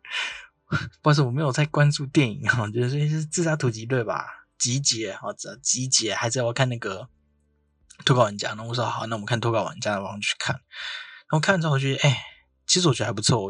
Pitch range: 115-145 Hz